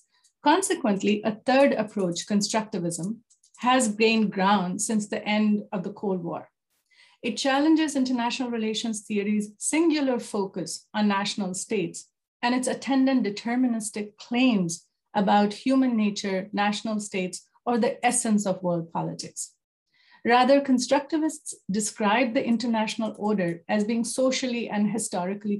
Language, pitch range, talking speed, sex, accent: English, 195-250 Hz, 120 wpm, female, Indian